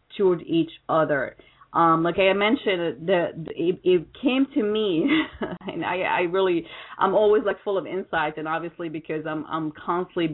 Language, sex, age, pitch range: English, female, 30-49, 160-195 Hz